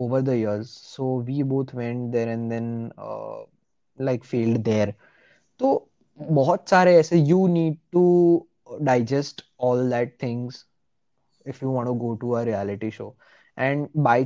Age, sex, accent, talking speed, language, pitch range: 20-39, male, Indian, 140 wpm, English, 115-145 Hz